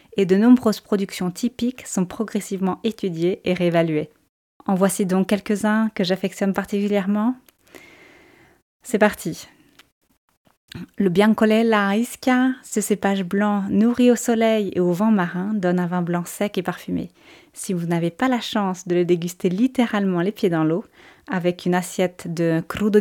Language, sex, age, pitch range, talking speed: French, female, 20-39, 180-215 Hz, 150 wpm